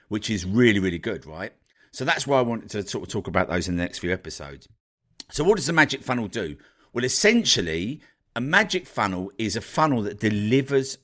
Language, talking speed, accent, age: English, 210 wpm, British, 50-69